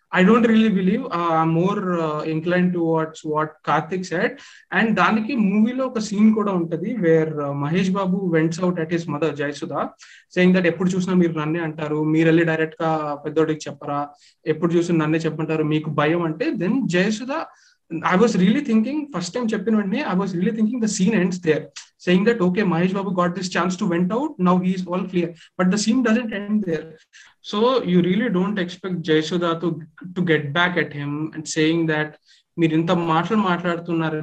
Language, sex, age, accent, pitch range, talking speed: Telugu, male, 20-39, native, 155-190 Hz, 190 wpm